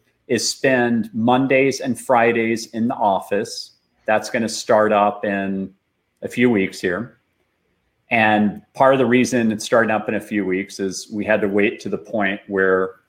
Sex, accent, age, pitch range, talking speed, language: male, American, 30-49, 100-125 Hz, 180 wpm, English